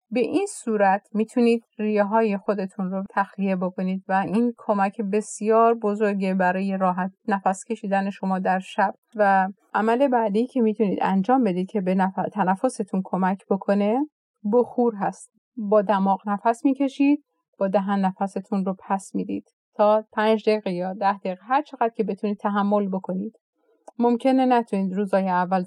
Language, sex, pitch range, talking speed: Persian, female, 195-230 Hz, 145 wpm